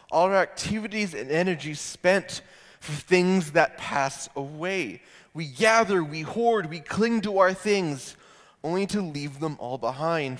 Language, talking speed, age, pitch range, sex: English, 150 wpm, 20-39, 140-190 Hz, male